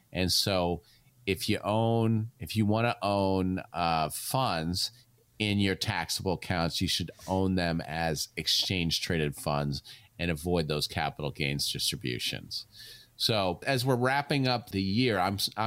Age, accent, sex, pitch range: 40-59, American, male, 85-110 Hz